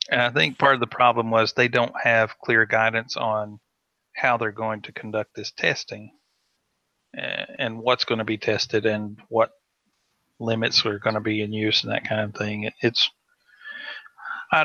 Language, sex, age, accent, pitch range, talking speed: English, male, 40-59, American, 110-125 Hz, 175 wpm